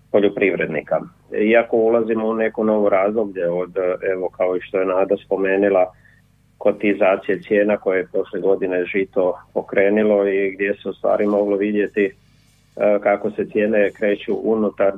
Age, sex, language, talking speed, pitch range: 40-59, male, Croatian, 140 wpm, 100-110 Hz